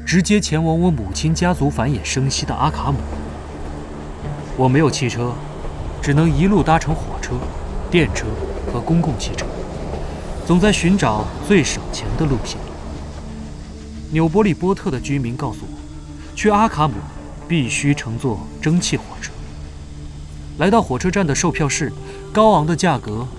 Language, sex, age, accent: Chinese, male, 20-39, native